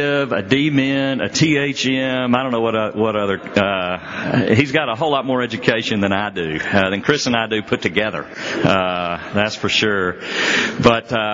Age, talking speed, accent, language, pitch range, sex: 50-69, 185 wpm, American, English, 95-125 Hz, male